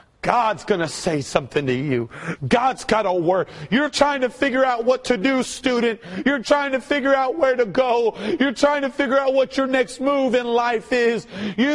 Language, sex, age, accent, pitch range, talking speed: English, male, 40-59, American, 195-255 Hz, 210 wpm